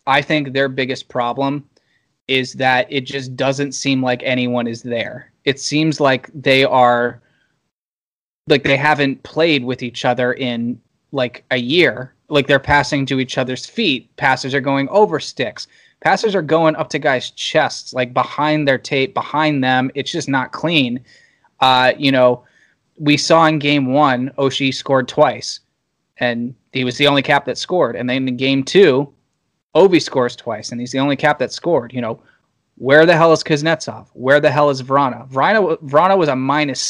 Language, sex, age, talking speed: English, male, 20-39, 180 wpm